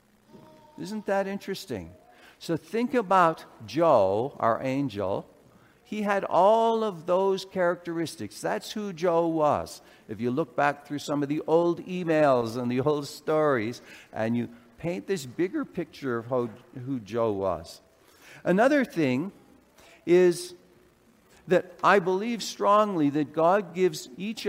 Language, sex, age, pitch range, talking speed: English, male, 60-79, 150-195 Hz, 135 wpm